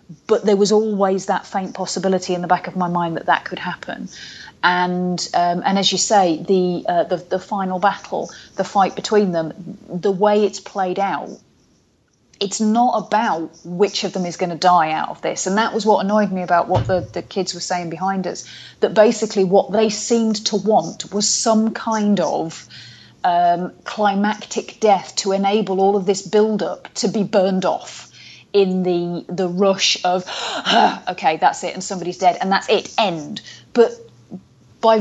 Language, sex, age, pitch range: English, female, 30-49, 180-220 Hz